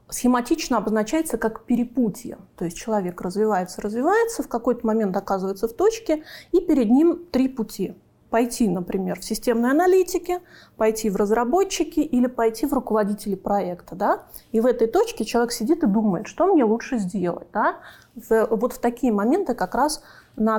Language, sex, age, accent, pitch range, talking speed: Russian, female, 20-39, native, 215-285 Hz, 160 wpm